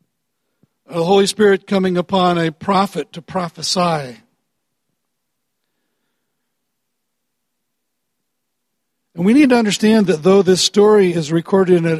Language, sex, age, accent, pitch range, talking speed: English, male, 60-79, American, 165-200 Hz, 105 wpm